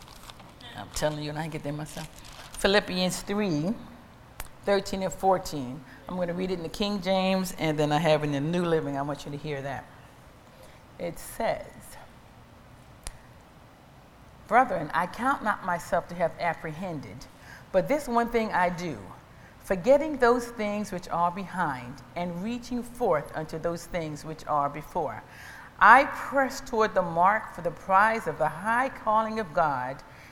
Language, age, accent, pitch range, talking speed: English, 40-59, American, 160-215 Hz, 165 wpm